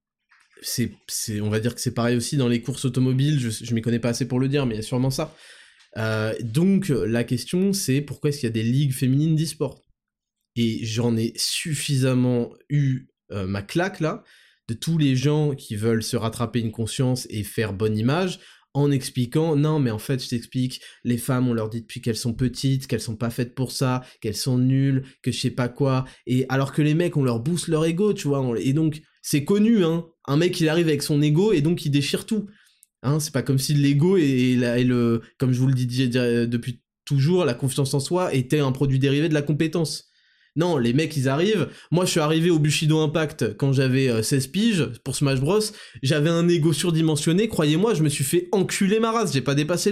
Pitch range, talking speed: 125-165 Hz, 225 wpm